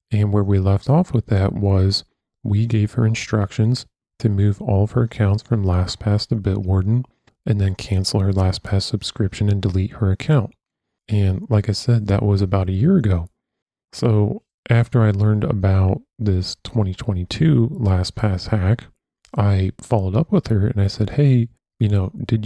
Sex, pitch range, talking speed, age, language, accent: male, 100-115 Hz, 170 wpm, 40-59, English, American